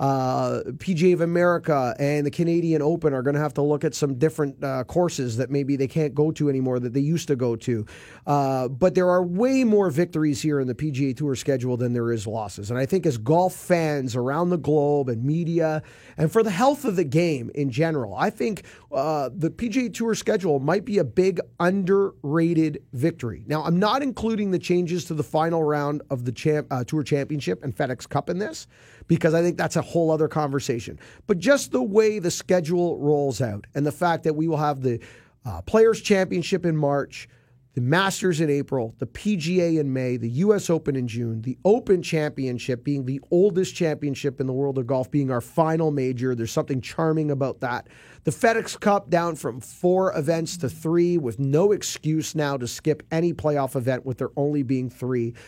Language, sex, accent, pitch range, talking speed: English, male, American, 135-175 Hz, 205 wpm